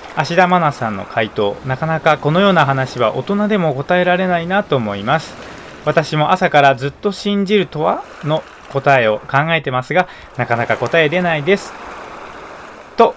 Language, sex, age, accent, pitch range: Japanese, male, 20-39, native, 130-190 Hz